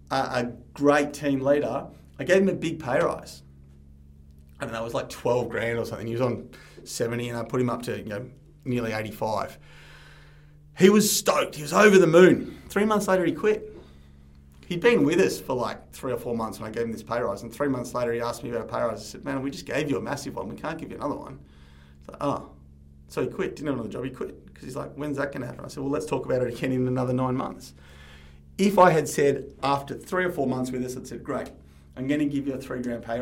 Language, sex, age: English, male, 30-49